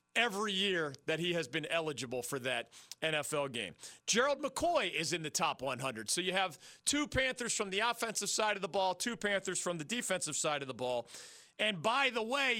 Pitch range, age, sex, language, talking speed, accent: 160-220 Hz, 40-59, male, English, 205 wpm, American